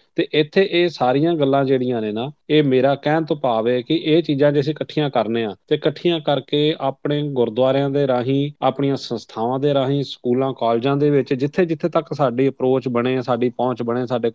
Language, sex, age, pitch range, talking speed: Punjabi, male, 30-49, 130-155 Hz, 190 wpm